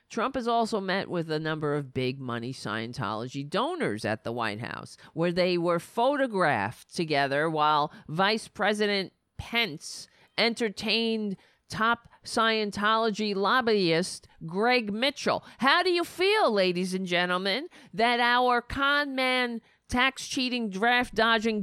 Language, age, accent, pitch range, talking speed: English, 40-59, American, 180-260 Hz, 120 wpm